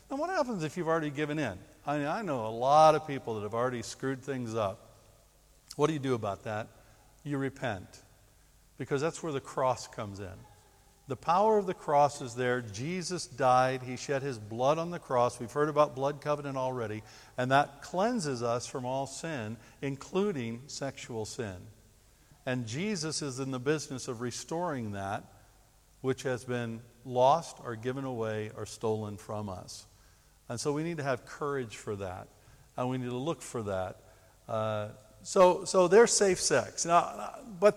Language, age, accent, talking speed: English, 60-79, American, 180 wpm